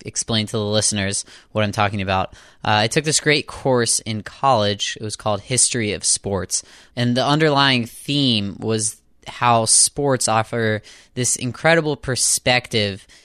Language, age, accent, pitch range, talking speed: English, 20-39, American, 100-115 Hz, 150 wpm